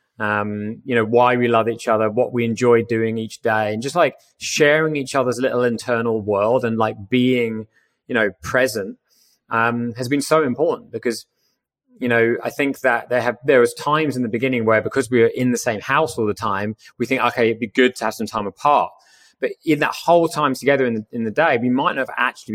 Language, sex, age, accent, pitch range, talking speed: English, male, 20-39, British, 110-130 Hz, 230 wpm